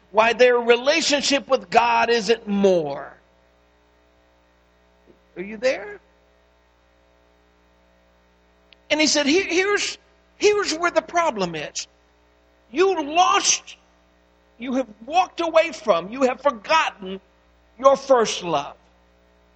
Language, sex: English, male